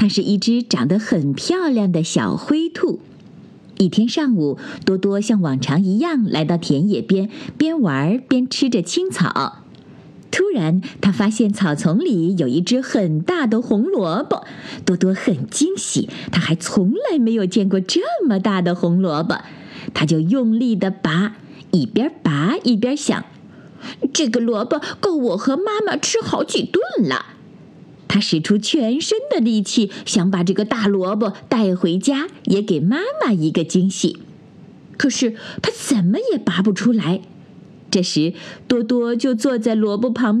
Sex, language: female, Chinese